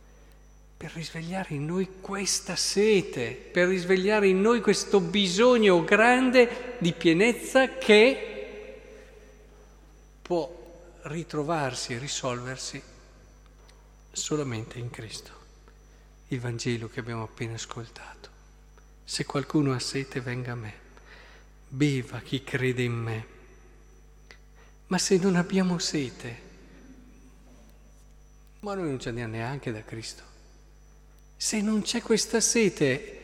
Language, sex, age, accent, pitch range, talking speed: Italian, male, 50-69, native, 130-205 Hz, 105 wpm